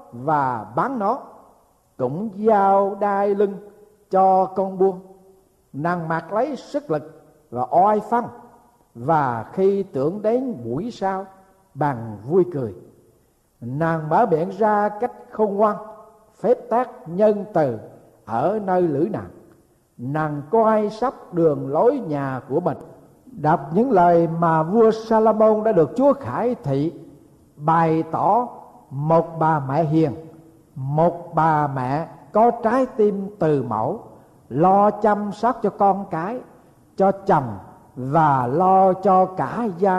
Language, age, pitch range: Vietnamese, 60-79, 155-210 Hz